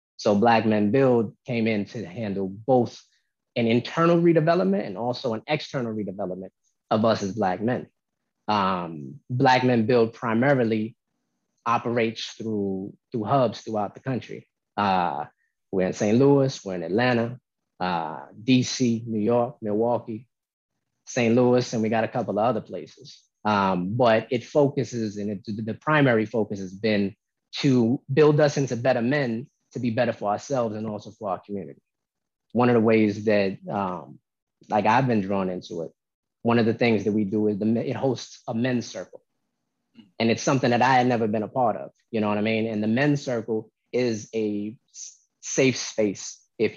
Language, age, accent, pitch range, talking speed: English, 30-49, American, 105-125 Hz, 170 wpm